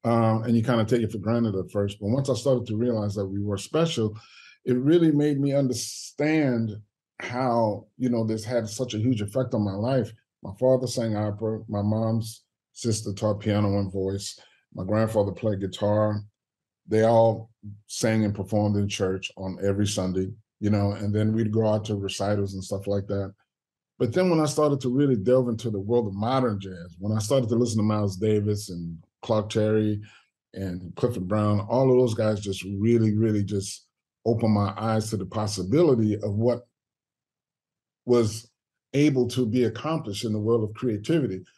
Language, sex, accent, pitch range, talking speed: English, male, American, 105-120 Hz, 190 wpm